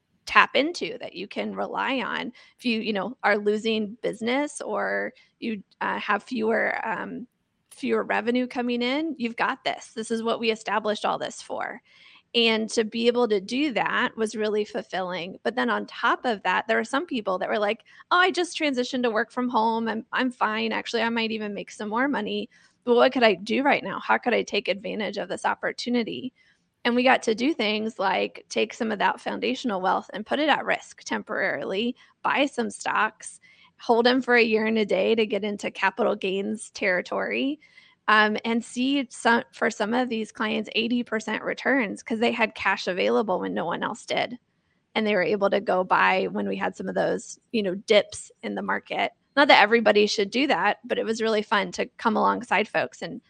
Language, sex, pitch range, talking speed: English, female, 215-245 Hz, 210 wpm